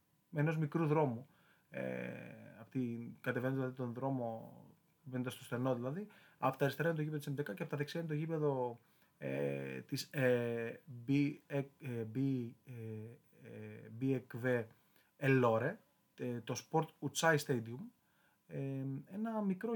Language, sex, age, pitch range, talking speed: Greek, male, 30-49, 115-150 Hz, 110 wpm